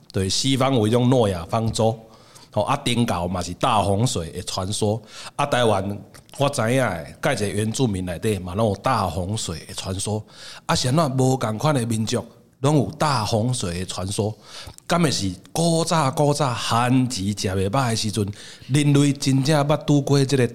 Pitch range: 100-130 Hz